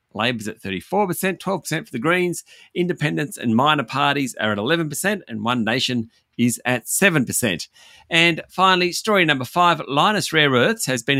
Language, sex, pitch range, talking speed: English, male, 110-160 Hz, 160 wpm